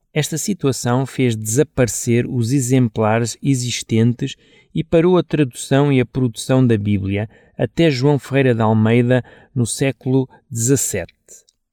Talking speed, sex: 125 wpm, male